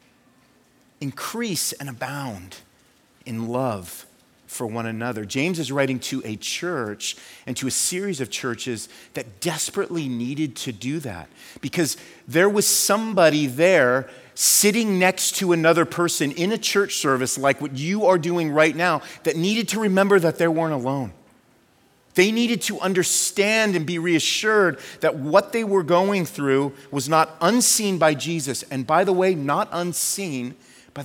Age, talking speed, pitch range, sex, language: 30-49, 155 wpm, 120-175 Hz, male, English